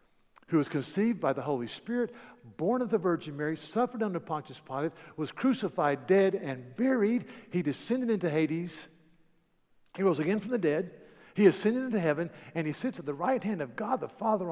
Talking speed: 190 wpm